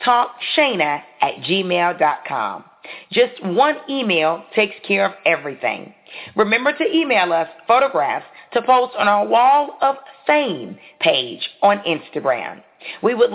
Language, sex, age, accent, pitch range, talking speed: English, female, 40-59, American, 195-265 Hz, 120 wpm